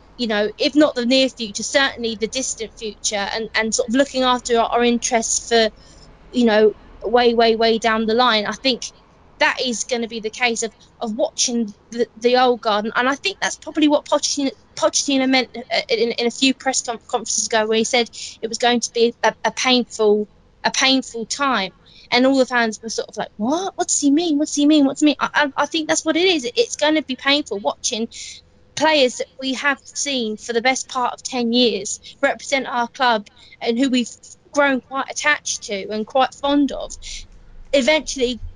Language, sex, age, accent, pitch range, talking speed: English, female, 20-39, British, 225-280 Hz, 215 wpm